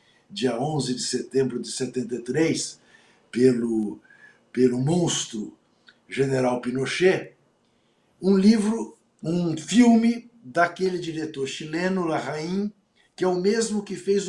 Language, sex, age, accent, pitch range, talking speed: Portuguese, male, 60-79, Brazilian, 155-220 Hz, 105 wpm